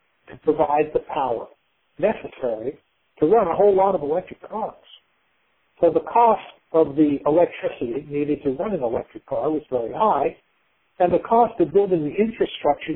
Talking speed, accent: 160 wpm, American